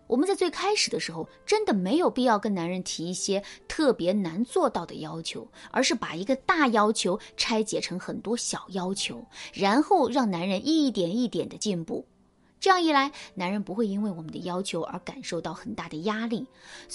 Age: 20-39